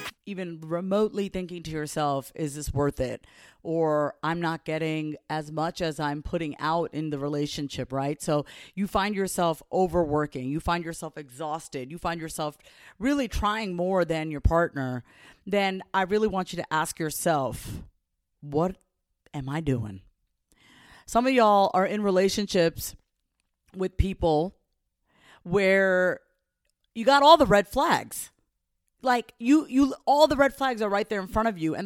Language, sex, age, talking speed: English, female, 40-59, 155 wpm